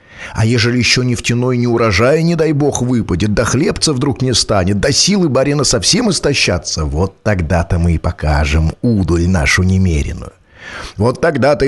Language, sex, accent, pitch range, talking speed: Russian, male, native, 95-140 Hz, 160 wpm